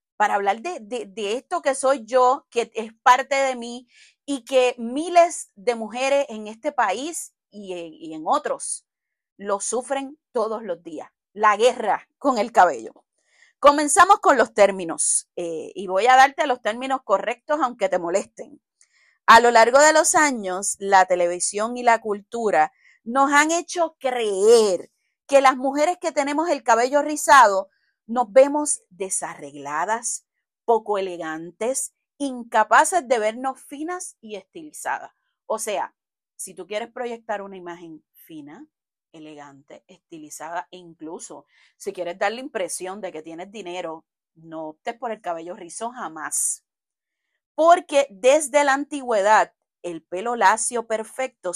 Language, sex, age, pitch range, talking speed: Spanish, female, 30-49, 195-280 Hz, 140 wpm